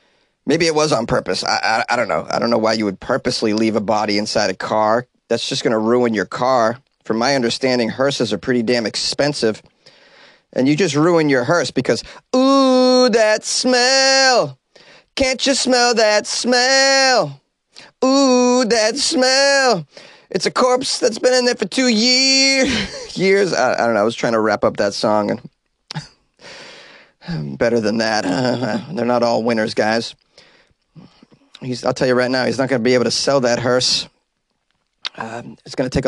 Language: English